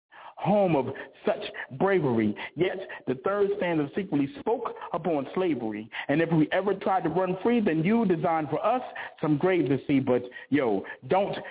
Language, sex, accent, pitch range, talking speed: English, male, American, 150-205 Hz, 165 wpm